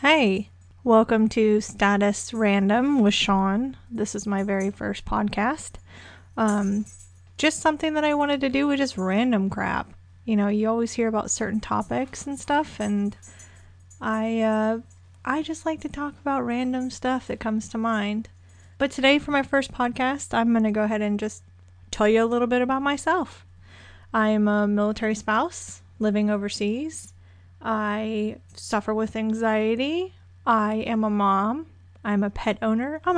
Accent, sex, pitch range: American, female, 150-245 Hz